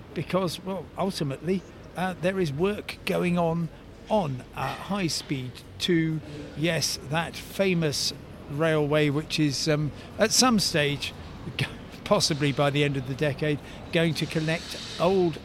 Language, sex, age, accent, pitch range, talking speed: English, male, 50-69, British, 140-175 Hz, 135 wpm